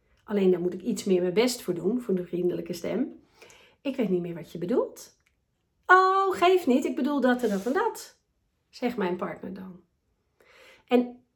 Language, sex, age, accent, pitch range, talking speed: Dutch, female, 40-59, Dutch, 200-275 Hz, 190 wpm